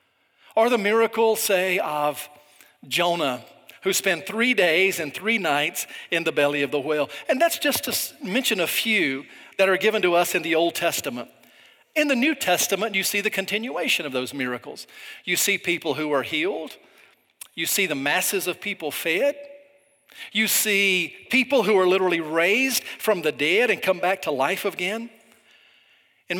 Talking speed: 175 wpm